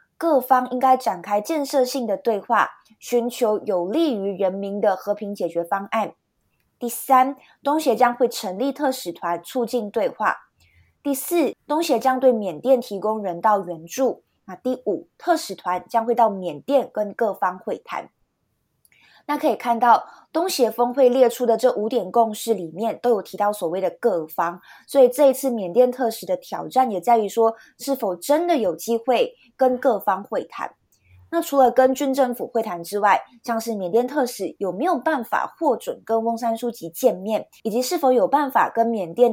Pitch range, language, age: 205-260 Hz, Chinese, 20-39